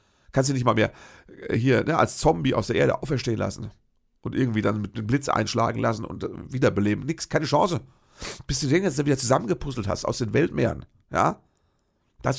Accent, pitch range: German, 110-140 Hz